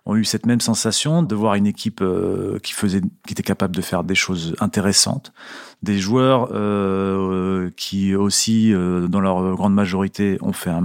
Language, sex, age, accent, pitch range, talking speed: French, male, 40-59, French, 95-115 Hz, 185 wpm